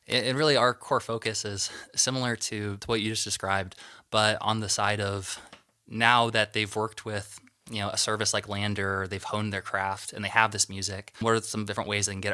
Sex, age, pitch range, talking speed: male, 20-39, 100-115 Hz, 220 wpm